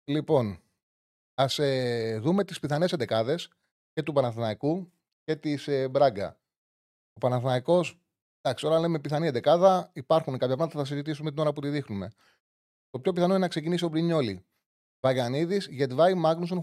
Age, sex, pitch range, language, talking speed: 30-49, male, 130-175 Hz, Greek, 155 wpm